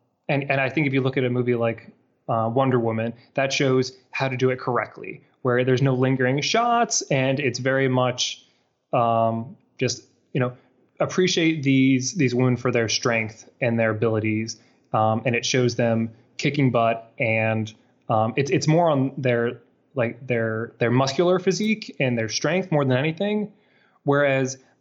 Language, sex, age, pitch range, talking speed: English, male, 20-39, 125-150 Hz, 170 wpm